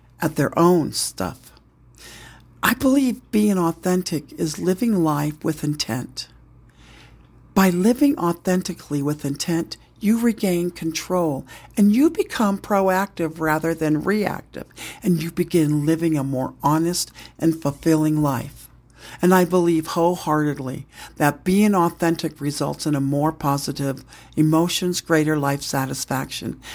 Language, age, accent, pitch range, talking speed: English, 60-79, American, 155-215 Hz, 120 wpm